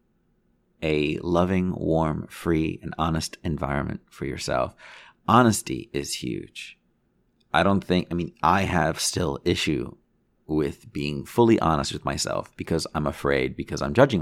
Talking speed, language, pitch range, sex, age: 140 wpm, English, 75-90 Hz, male, 30-49